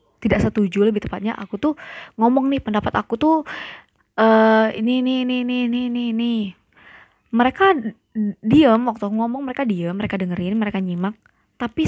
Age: 20-39